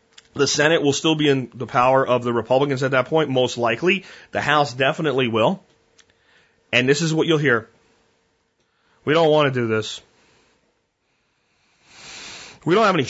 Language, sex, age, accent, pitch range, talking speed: English, male, 40-59, American, 120-160 Hz, 165 wpm